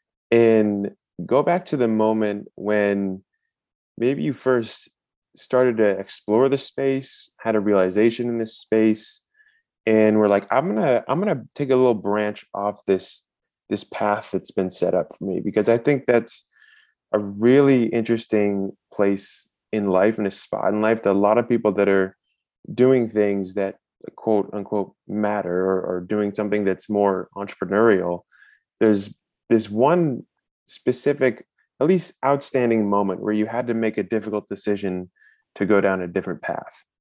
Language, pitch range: English, 100-120 Hz